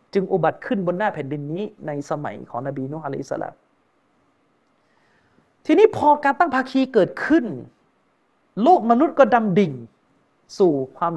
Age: 30-49